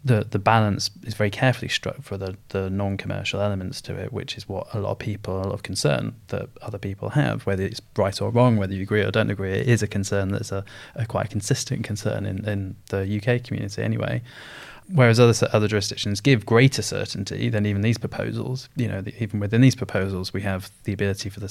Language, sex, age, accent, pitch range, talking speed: English, male, 20-39, British, 100-120 Hz, 225 wpm